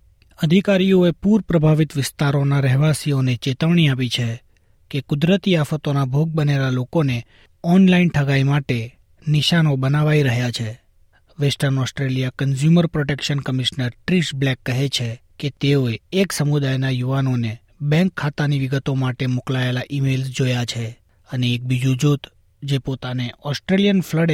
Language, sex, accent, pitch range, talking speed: Gujarati, male, native, 125-155 Hz, 125 wpm